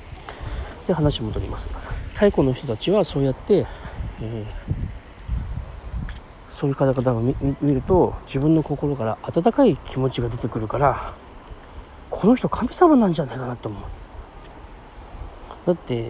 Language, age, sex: Japanese, 40-59, male